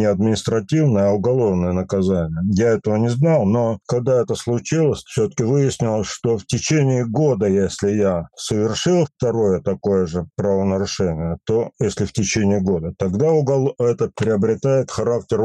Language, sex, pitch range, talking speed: English, male, 100-125 Hz, 140 wpm